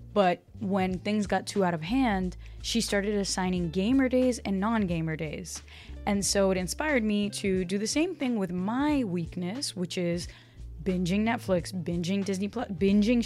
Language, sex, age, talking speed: English, female, 10-29, 165 wpm